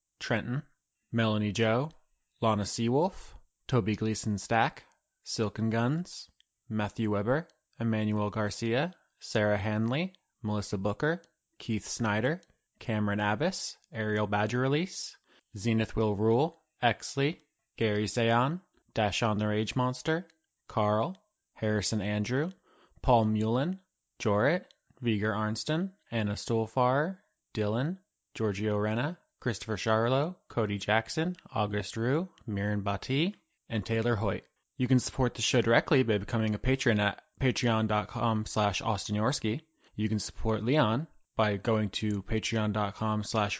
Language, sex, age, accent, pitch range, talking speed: English, male, 20-39, American, 105-130 Hz, 110 wpm